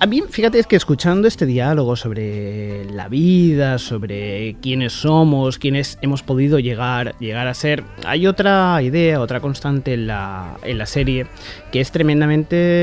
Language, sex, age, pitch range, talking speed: Spanish, male, 30-49, 125-170 Hz, 160 wpm